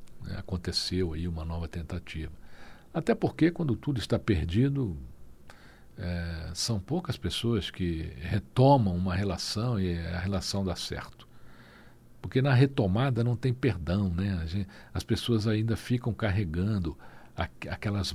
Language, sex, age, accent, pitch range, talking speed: Portuguese, male, 60-79, Brazilian, 95-140 Hz, 120 wpm